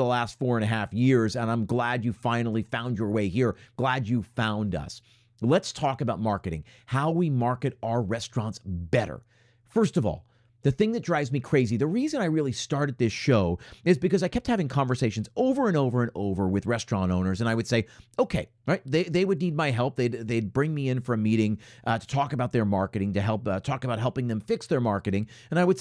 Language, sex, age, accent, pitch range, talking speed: English, male, 40-59, American, 115-155 Hz, 230 wpm